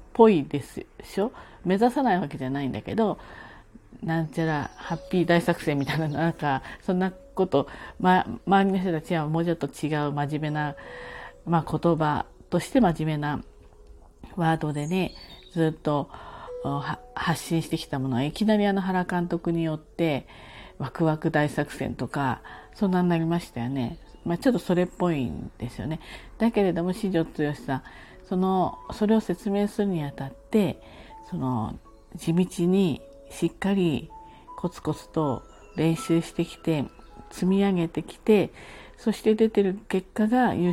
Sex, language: female, Japanese